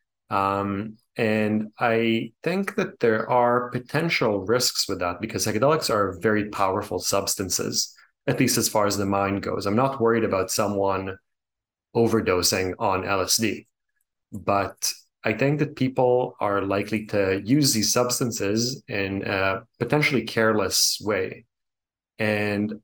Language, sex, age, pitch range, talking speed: English, male, 30-49, 100-125 Hz, 130 wpm